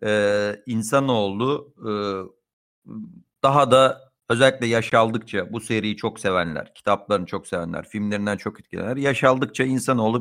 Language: Turkish